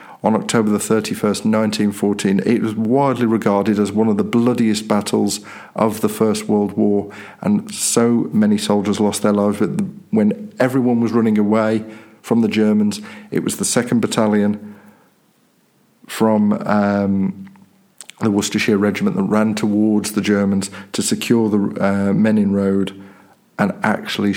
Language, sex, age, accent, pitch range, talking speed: English, male, 50-69, British, 100-115 Hz, 145 wpm